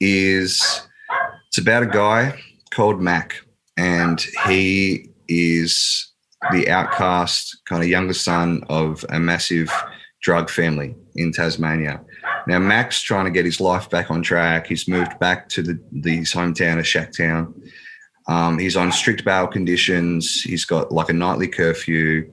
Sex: male